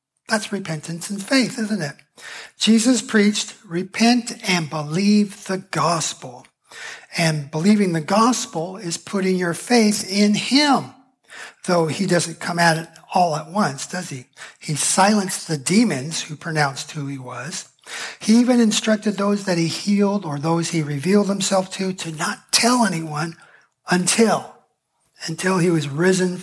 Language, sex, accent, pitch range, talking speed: English, male, American, 160-210 Hz, 150 wpm